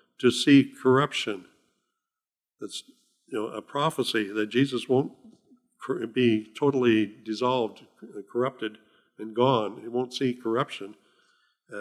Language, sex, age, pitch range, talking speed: English, male, 60-79, 115-140 Hz, 110 wpm